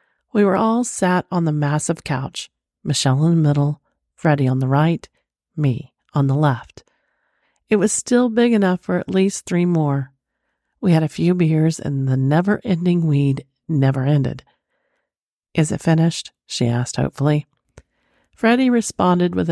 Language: English